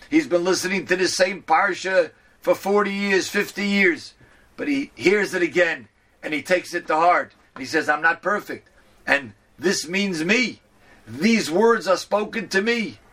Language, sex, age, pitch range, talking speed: English, male, 40-59, 165-205 Hz, 175 wpm